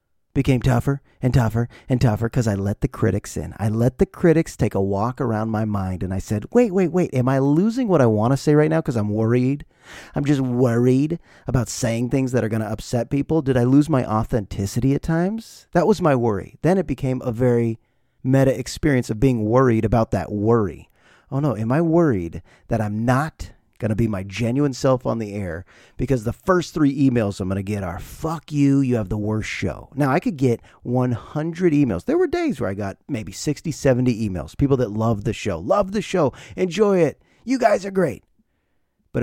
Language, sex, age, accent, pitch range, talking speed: English, male, 30-49, American, 110-140 Hz, 215 wpm